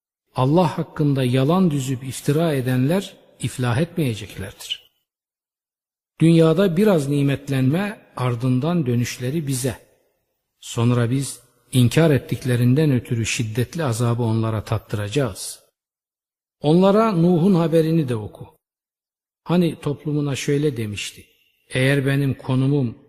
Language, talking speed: Turkish, 90 wpm